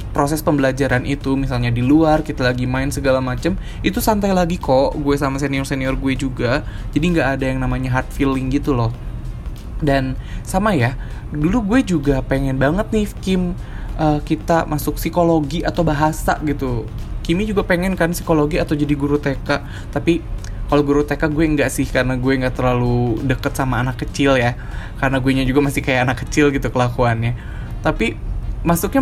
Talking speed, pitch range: 170 wpm, 130-160 Hz